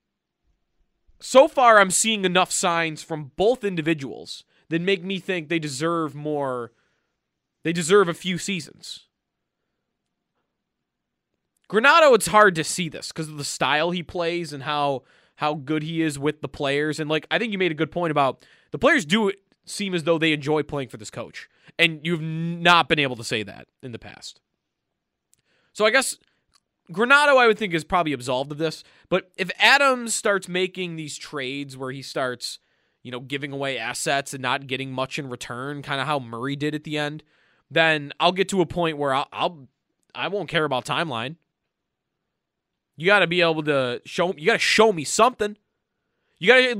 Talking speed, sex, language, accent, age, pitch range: 190 wpm, male, English, American, 20-39, 145-195 Hz